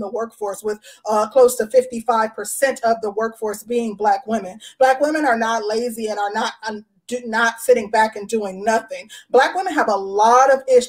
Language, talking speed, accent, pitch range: English, 195 wpm, American, 215-255 Hz